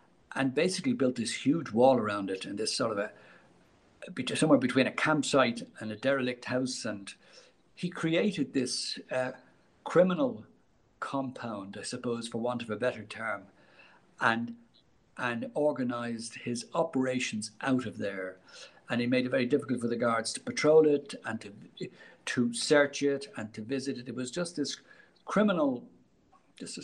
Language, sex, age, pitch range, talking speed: English, male, 60-79, 115-145 Hz, 160 wpm